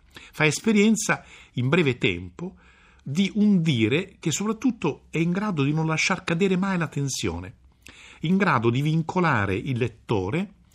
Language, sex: Italian, male